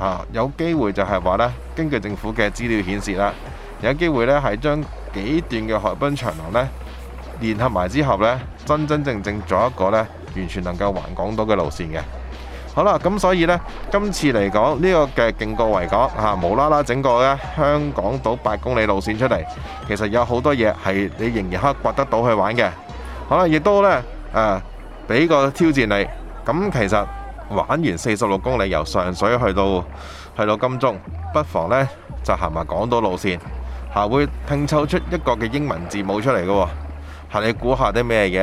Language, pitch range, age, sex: Chinese, 90-130 Hz, 20-39, male